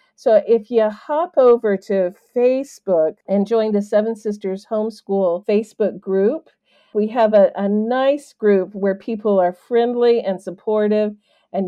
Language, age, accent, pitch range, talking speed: English, 50-69, American, 190-225 Hz, 145 wpm